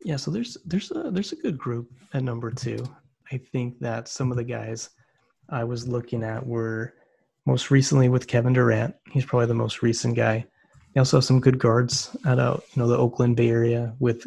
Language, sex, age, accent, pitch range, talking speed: English, male, 30-49, American, 115-135 Hz, 205 wpm